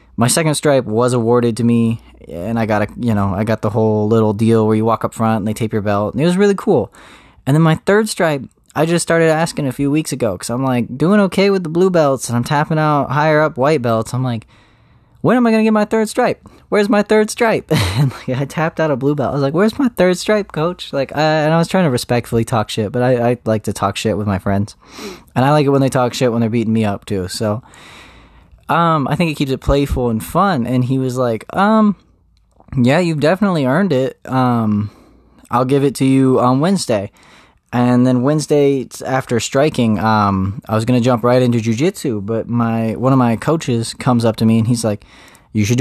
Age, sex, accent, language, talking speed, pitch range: 20-39, male, American, English, 240 wpm, 115-155 Hz